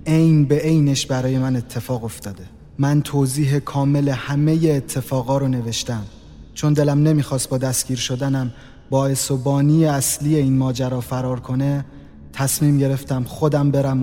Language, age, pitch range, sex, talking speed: Persian, 30-49, 115-145 Hz, male, 135 wpm